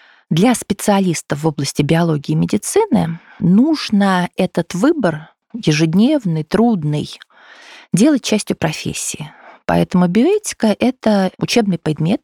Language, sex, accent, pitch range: Russian, female, native, 165-235 Hz